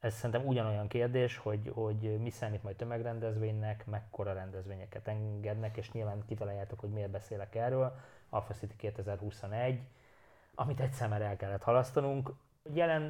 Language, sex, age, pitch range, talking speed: English, male, 20-39, 105-120 Hz, 135 wpm